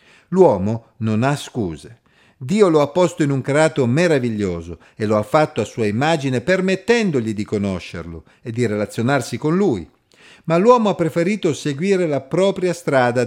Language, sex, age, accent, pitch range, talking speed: Italian, male, 50-69, native, 110-155 Hz, 160 wpm